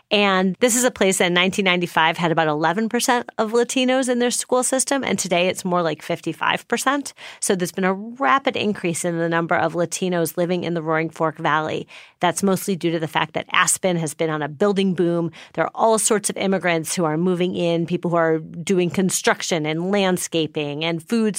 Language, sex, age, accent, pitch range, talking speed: English, female, 30-49, American, 170-215 Hz, 210 wpm